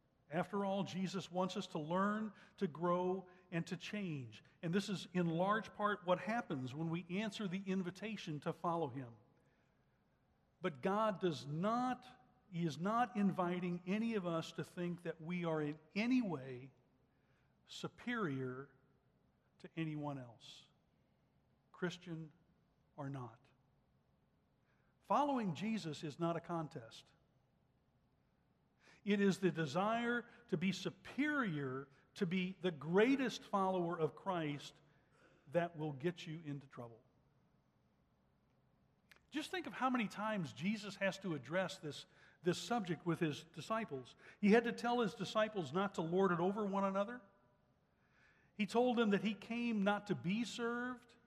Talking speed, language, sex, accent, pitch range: 140 wpm, English, male, American, 155-205 Hz